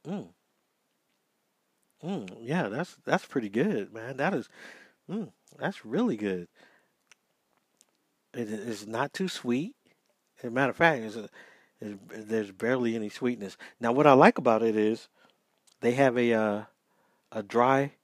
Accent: American